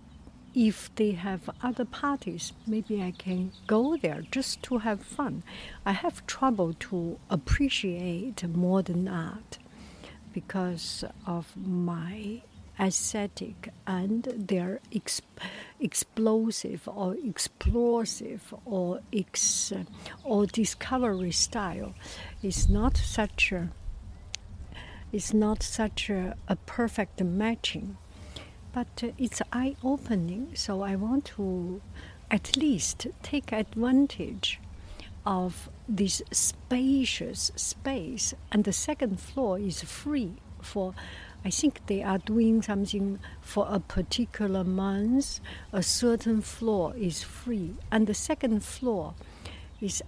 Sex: female